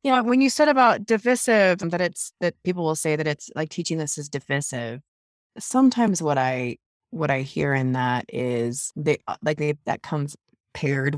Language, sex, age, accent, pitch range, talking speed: English, female, 30-49, American, 135-170 Hz, 190 wpm